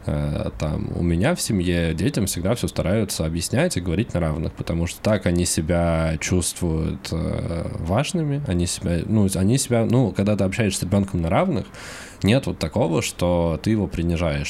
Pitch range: 85-105 Hz